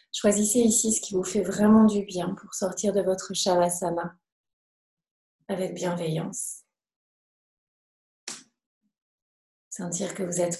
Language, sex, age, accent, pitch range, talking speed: French, female, 30-49, French, 180-210 Hz, 115 wpm